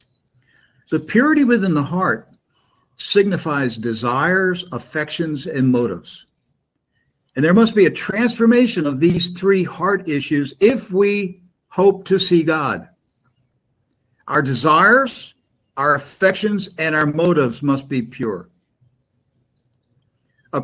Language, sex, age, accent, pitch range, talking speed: English, male, 60-79, American, 130-175 Hz, 110 wpm